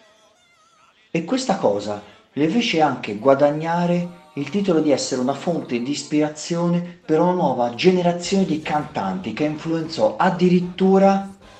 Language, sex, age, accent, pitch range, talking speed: Italian, male, 40-59, native, 120-175 Hz, 125 wpm